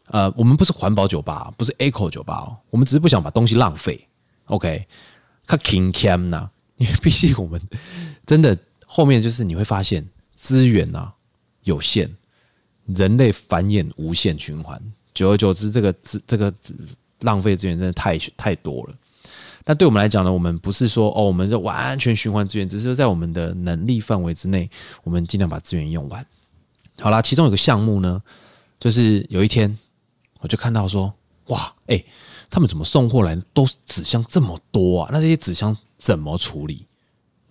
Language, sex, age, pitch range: Chinese, male, 20-39, 90-120 Hz